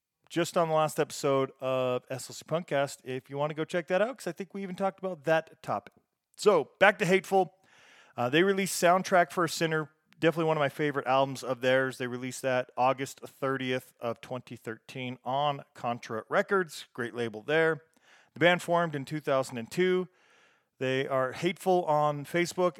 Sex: male